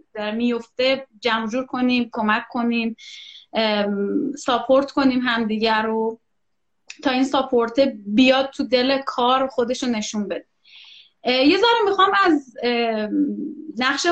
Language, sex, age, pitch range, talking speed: Persian, female, 30-49, 225-275 Hz, 110 wpm